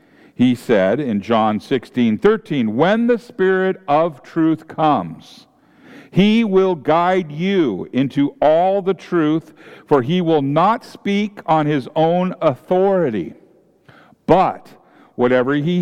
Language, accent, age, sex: English, American, 50-69, male